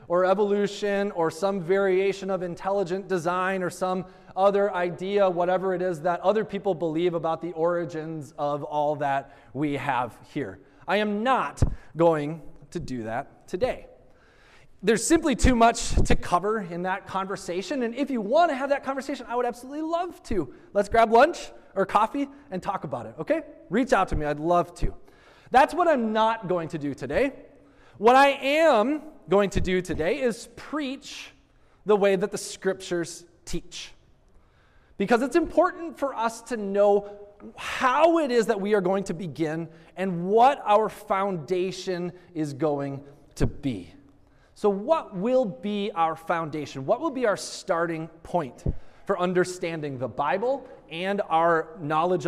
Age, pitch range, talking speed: 20-39, 165-235 Hz, 160 wpm